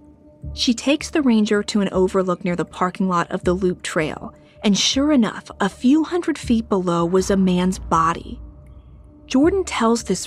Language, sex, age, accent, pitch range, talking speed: English, female, 30-49, American, 175-250 Hz, 175 wpm